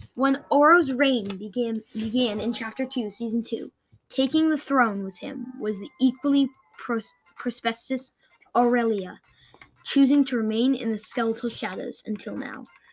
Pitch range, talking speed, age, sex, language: 225-280 Hz, 135 wpm, 10-29, female, English